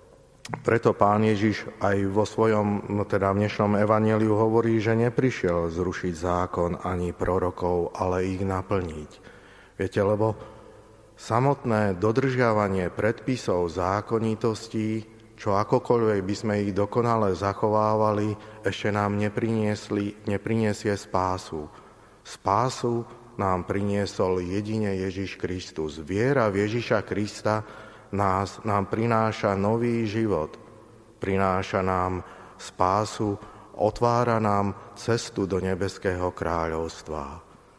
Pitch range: 95-110 Hz